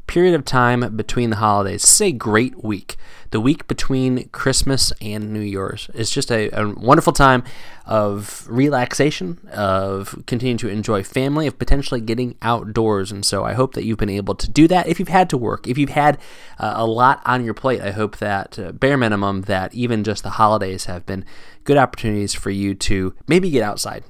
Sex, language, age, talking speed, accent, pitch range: male, English, 20-39, 195 wpm, American, 100-125 Hz